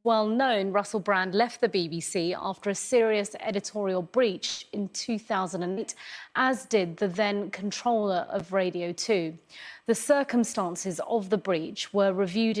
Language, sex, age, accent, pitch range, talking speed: English, female, 30-49, British, 190-230 Hz, 140 wpm